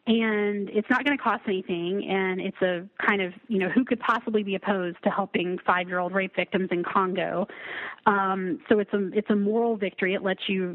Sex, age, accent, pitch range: female, 30-49, American, 190-225 Hz